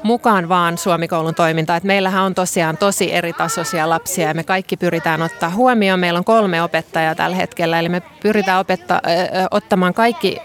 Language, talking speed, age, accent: Finnish, 165 wpm, 30-49, native